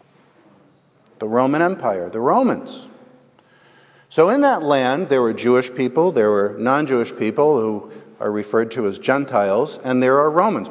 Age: 50-69